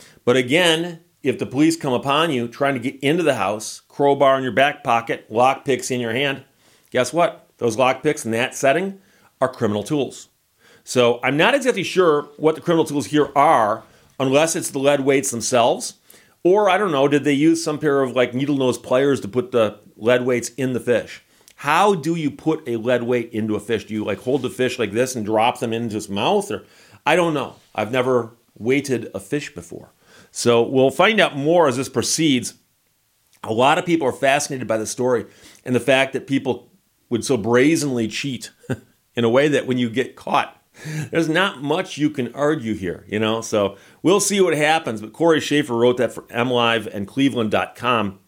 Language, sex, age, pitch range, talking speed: English, male, 40-59, 115-145 Hz, 205 wpm